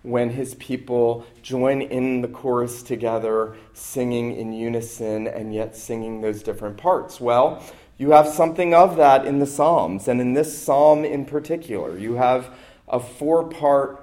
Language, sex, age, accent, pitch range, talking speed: English, male, 40-59, American, 115-150 Hz, 155 wpm